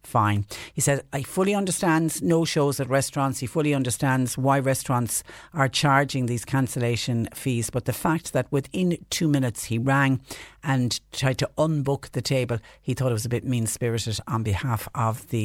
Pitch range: 125-150 Hz